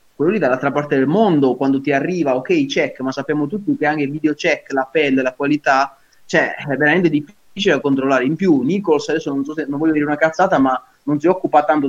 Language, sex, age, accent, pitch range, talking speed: Italian, male, 20-39, native, 135-160 Hz, 230 wpm